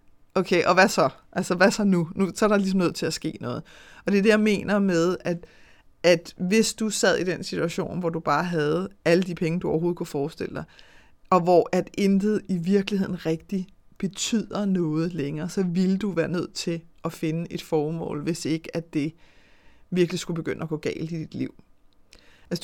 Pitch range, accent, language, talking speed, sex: 165-200 Hz, native, Danish, 205 wpm, female